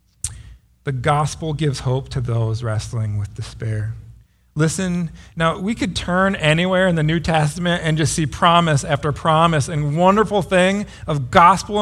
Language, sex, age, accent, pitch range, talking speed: English, male, 40-59, American, 125-165 Hz, 150 wpm